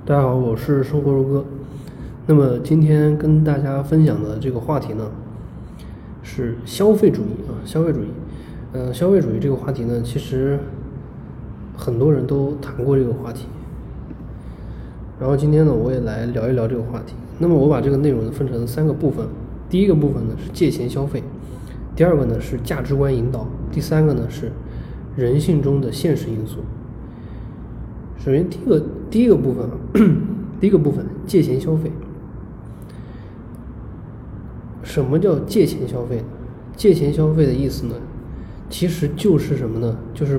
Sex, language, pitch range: male, Chinese, 120-150 Hz